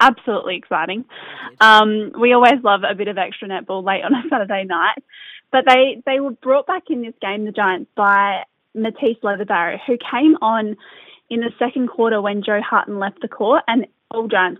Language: English